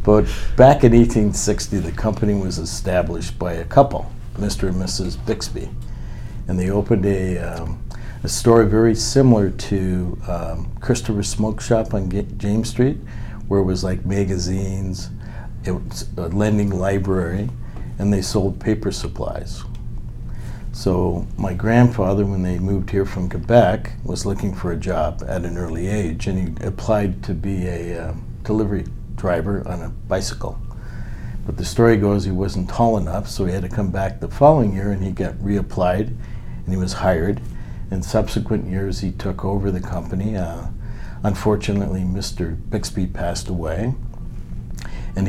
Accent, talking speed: American, 155 wpm